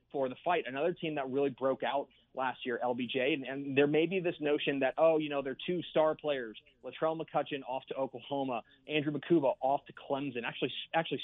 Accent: American